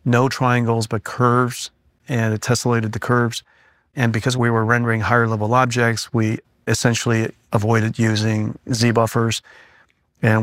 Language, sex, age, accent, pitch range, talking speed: English, male, 40-59, American, 110-120 Hz, 125 wpm